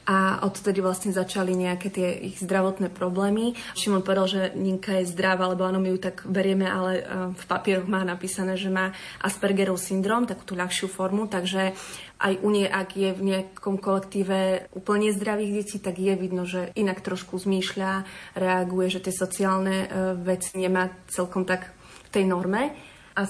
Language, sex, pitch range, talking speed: Slovak, female, 185-195 Hz, 165 wpm